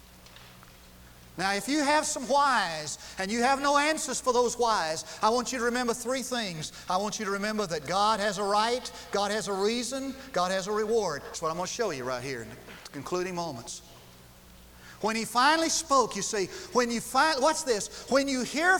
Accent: American